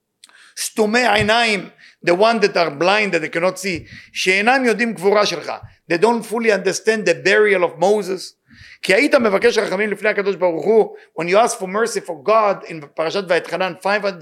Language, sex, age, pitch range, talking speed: English, male, 50-69, 170-220 Hz, 120 wpm